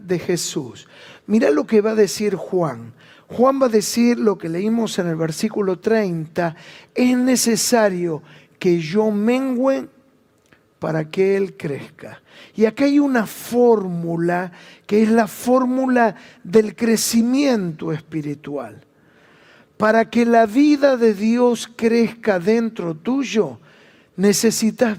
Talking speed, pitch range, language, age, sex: 120 wpm, 180-235 Hz, Spanish, 50-69, male